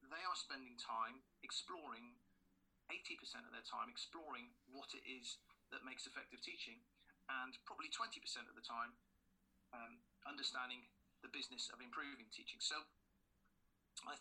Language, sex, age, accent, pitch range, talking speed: English, male, 30-49, British, 95-145 Hz, 135 wpm